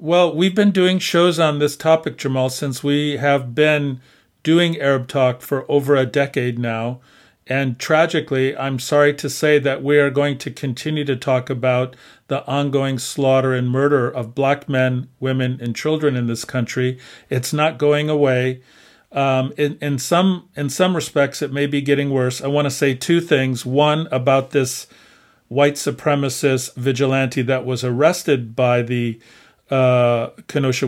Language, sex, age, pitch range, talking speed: English, male, 50-69, 130-150 Hz, 165 wpm